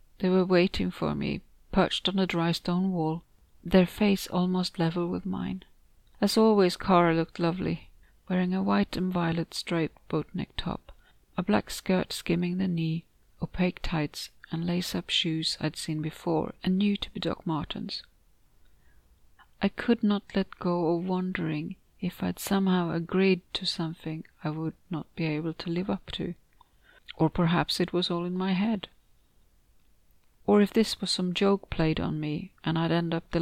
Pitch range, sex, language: 160-190 Hz, female, English